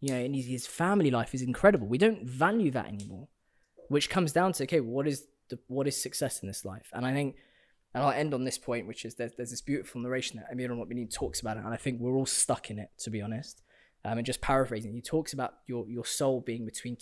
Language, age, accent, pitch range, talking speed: English, 20-39, British, 115-130 Hz, 260 wpm